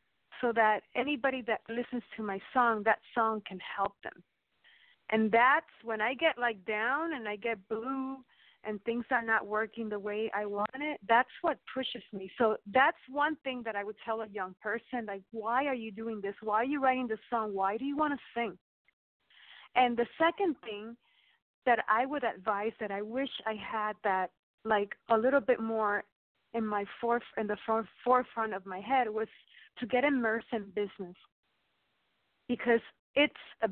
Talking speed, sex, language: 190 wpm, female, English